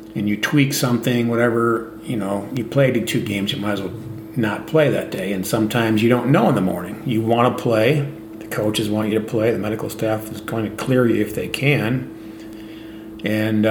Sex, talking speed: male, 215 wpm